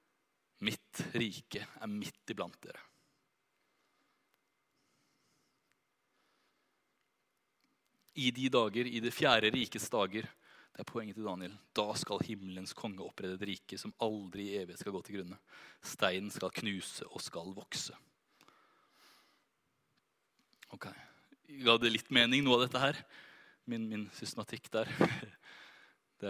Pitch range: 100-135 Hz